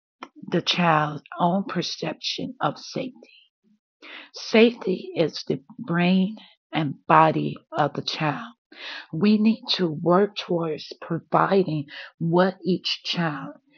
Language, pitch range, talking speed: English, 160-225 Hz, 105 wpm